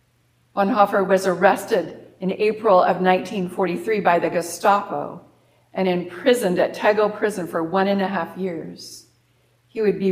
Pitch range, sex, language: 155-205 Hz, female, English